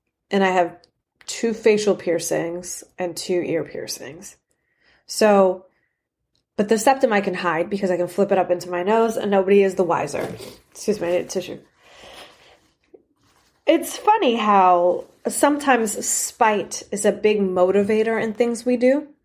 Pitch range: 180-225 Hz